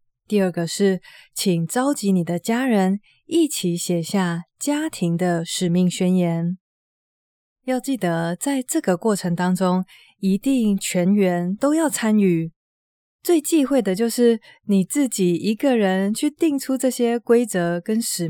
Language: Chinese